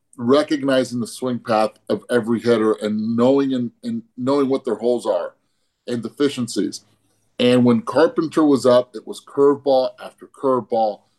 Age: 30-49